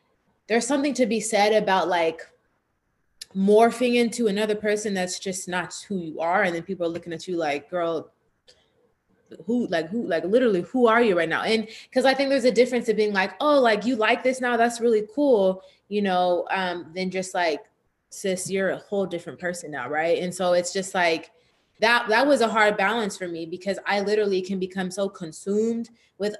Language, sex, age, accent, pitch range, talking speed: English, female, 20-39, American, 180-215 Hz, 205 wpm